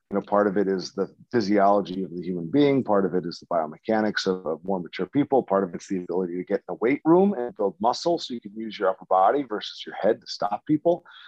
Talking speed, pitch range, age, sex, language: 260 wpm, 100-125 Hz, 40-59, male, English